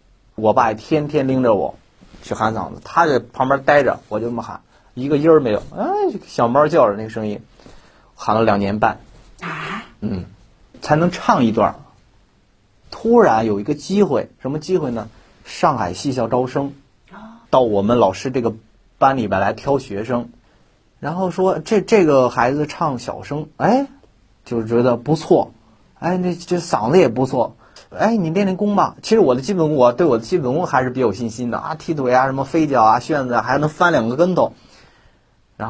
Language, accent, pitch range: Chinese, native, 110-165 Hz